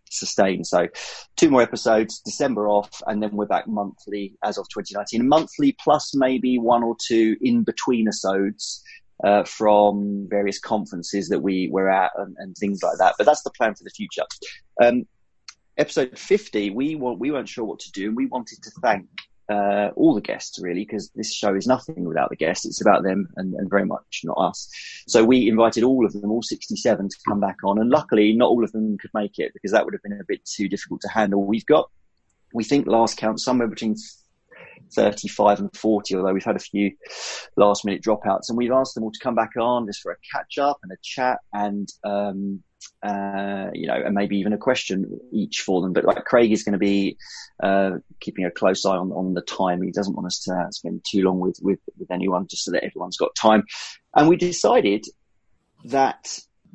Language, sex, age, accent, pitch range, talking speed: English, male, 30-49, British, 100-125 Hz, 215 wpm